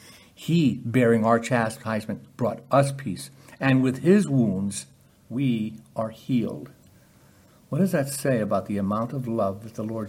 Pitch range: 110-140 Hz